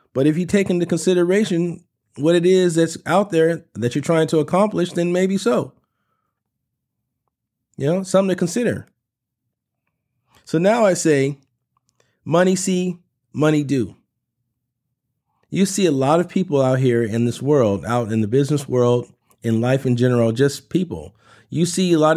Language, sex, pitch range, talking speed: English, male, 120-170 Hz, 160 wpm